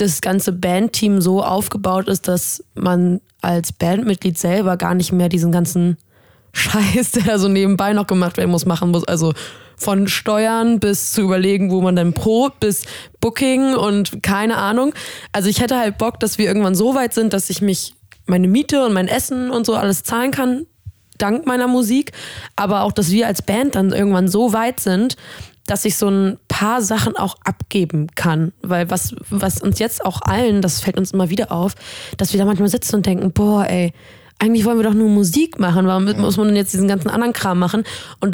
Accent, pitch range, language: German, 185-225 Hz, German